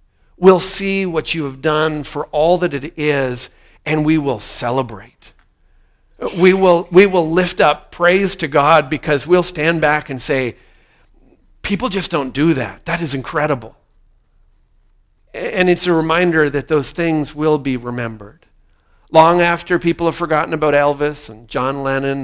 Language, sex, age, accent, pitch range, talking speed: English, male, 50-69, American, 105-160 Hz, 155 wpm